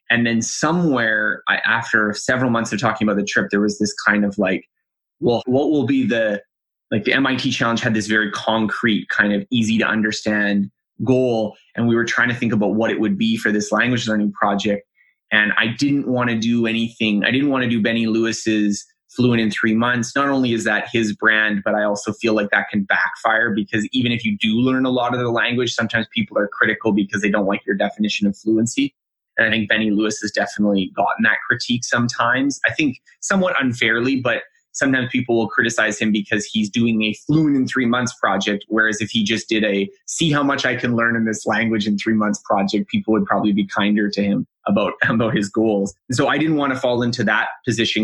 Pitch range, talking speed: 105-120 Hz, 220 wpm